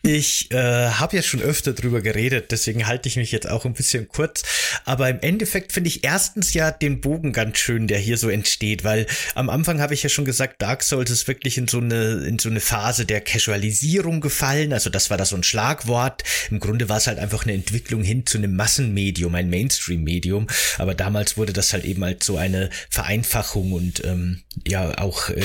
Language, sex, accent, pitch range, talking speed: German, male, German, 100-130 Hz, 210 wpm